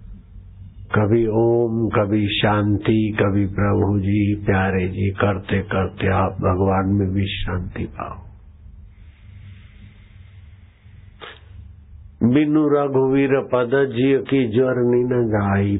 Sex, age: male, 60-79